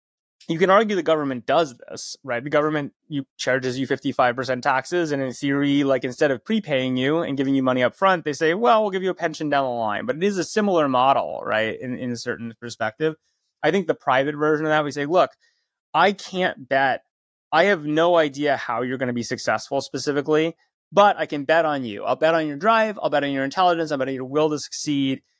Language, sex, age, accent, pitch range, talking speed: English, male, 20-39, American, 130-175 Hz, 230 wpm